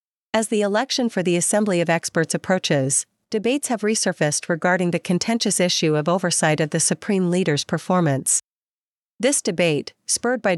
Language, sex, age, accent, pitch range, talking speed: English, female, 40-59, American, 165-195 Hz, 155 wpm